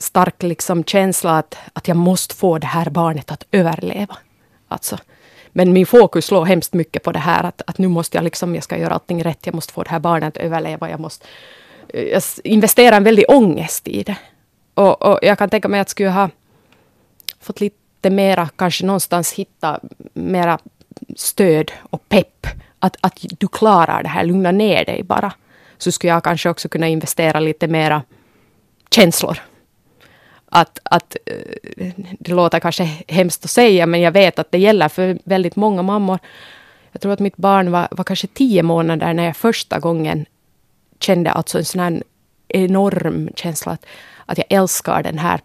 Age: 20-39